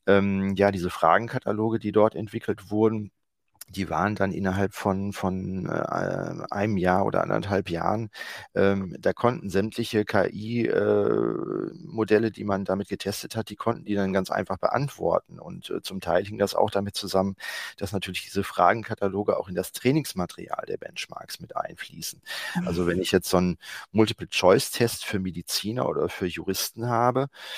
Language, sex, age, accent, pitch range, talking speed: German, male, 40-59, German, 95-110 Hz, 145 wpm